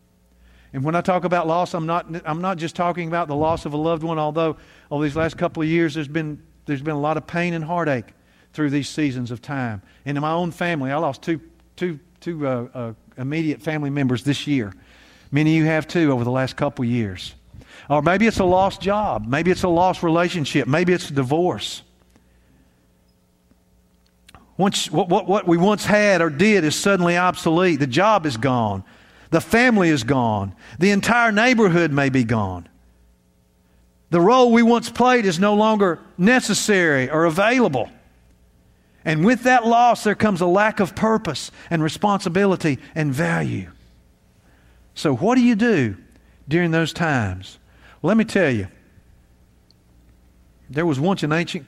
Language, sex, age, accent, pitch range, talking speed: English, male, 50-69, American, 105-175 Hz, 175 wpm